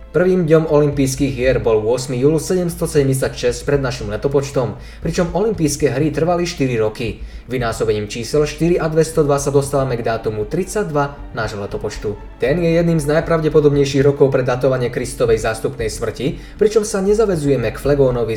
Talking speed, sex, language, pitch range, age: 145 wpm, male, Slovak, 130-160 Hz, 20-39